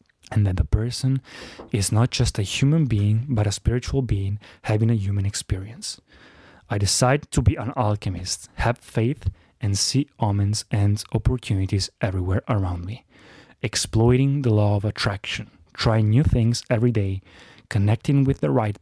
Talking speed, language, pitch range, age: 155 wpm, Italian, 100-130 Hz, 20-39